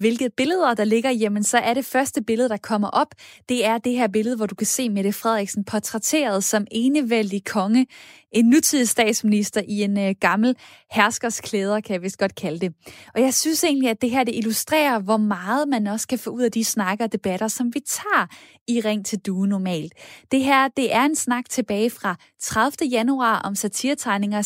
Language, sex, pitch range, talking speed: Danish, female, 210-260 Hz, 200 wpm